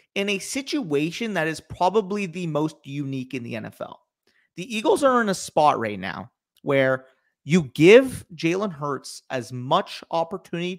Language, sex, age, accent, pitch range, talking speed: English, male, 30-49, American, 145-195 Hz, 155 wpm